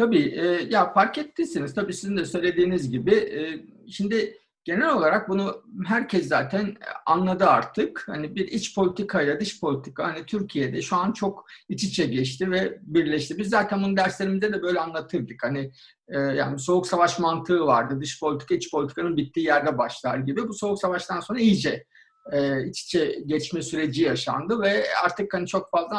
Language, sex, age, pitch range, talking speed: Turkish, male, 50-69, 165-220 Hz, 160 wpm